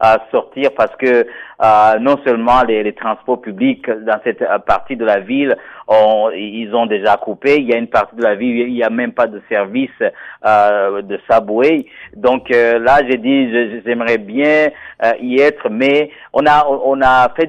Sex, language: male, French